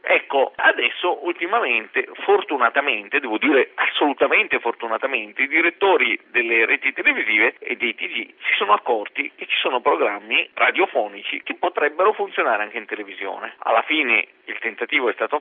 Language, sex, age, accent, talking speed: Italian, male, 50-69, native, 140 wpm